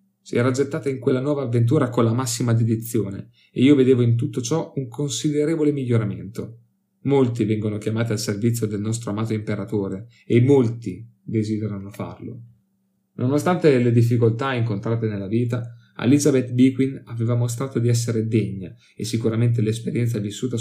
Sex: male